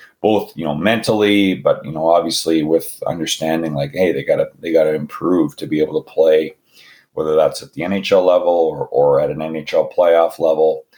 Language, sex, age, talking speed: English, male, 30-49, 190 wpm